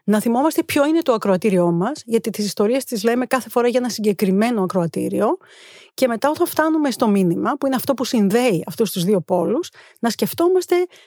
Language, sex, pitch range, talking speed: Greek, female, 190-280 Hz, 190 wpm